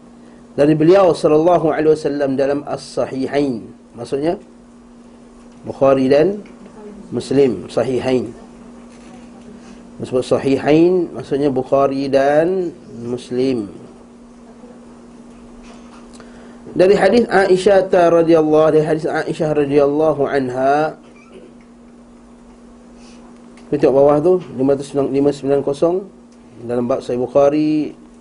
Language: Malay